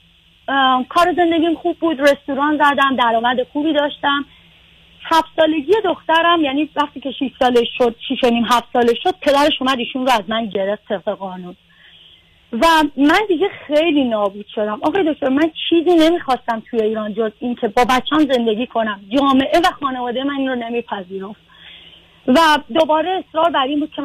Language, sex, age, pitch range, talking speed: Persian, female, 30-49, 225-295 Hz, 160 wpm